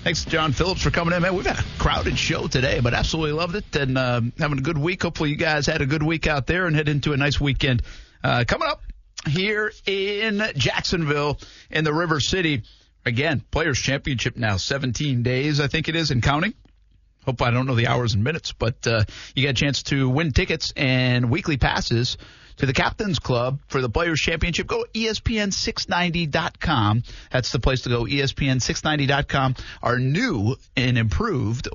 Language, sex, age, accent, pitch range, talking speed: English, male, 50-69, American, 115-155 Hz, 190 wpm